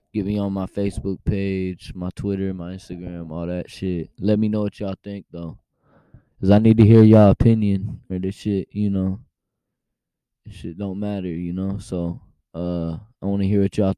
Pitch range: 90-105 Hz